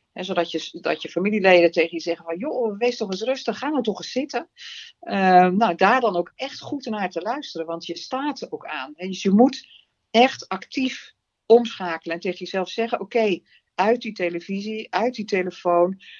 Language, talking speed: Dutch, 210 wpm